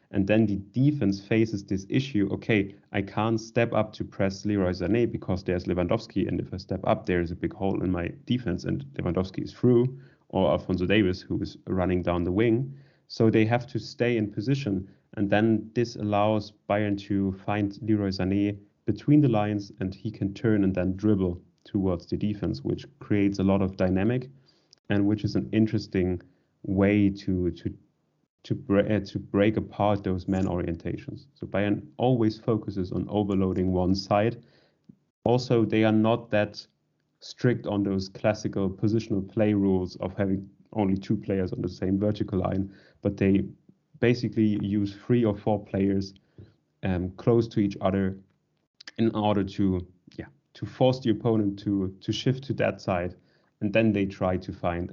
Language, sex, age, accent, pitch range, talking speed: English, male, 30-49, German, 95-110 Hz, 175 wpm